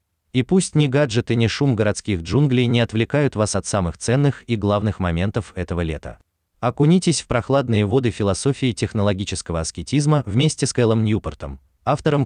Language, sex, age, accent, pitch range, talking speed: Russian, male, 30-49, native, 90-130 Hz, 150 wpm